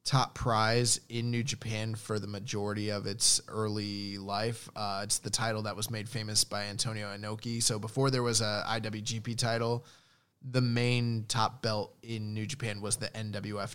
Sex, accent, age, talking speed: male, American, 20-39, 175 wpm